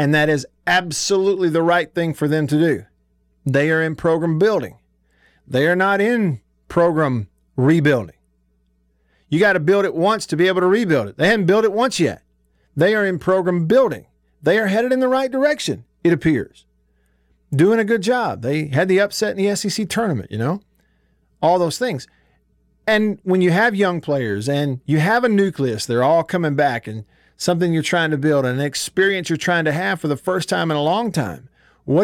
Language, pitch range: English, 115-185 Hz